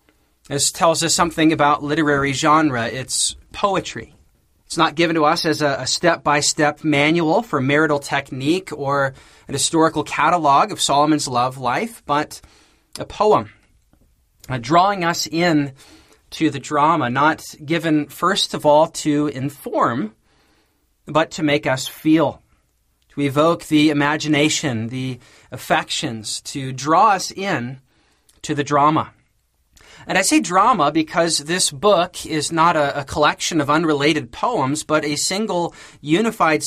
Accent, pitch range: American, 140-165 Hz